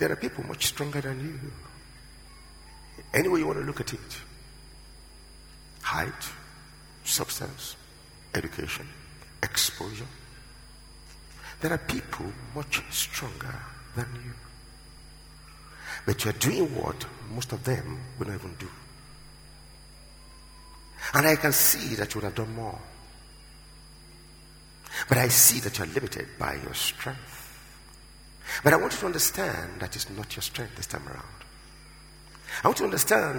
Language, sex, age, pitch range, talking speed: English, male, 50-69, 80-130 Hz, 140 wpm